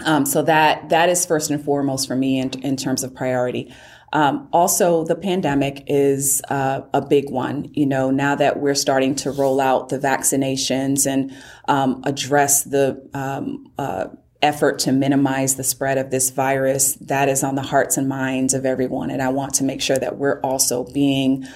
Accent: American